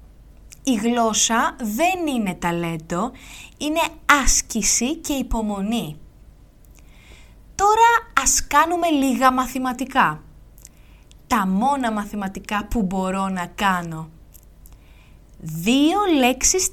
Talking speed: 85 wpm